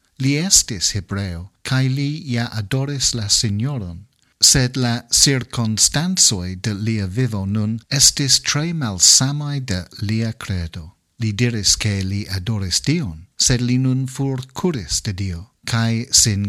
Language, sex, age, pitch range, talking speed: English, male, 50-69, 100-130 Hz, 130 wpm